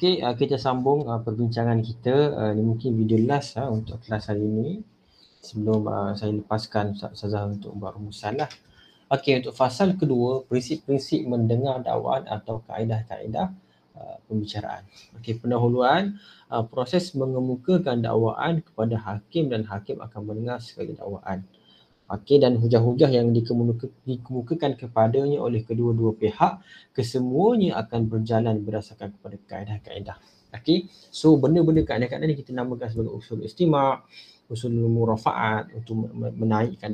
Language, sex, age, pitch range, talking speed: Malay, male, 30-49, 110-140 Hz, 130 wpm